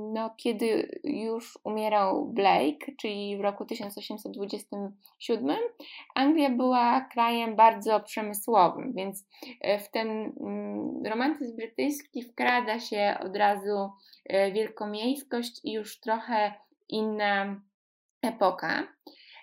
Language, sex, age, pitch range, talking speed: Polish, female, 20-39, 200-245 Hz, 90 wpm